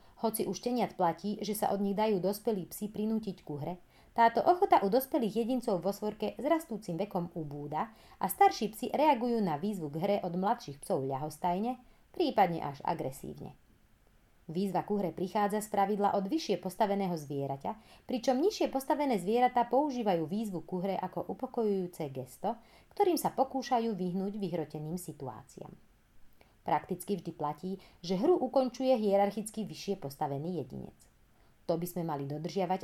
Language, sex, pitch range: Slovak, female, 170-230 Hz